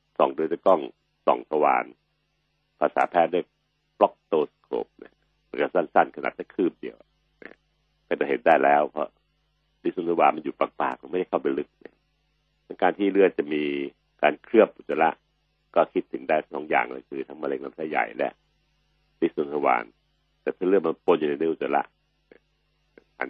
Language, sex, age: Thai, male, 60-79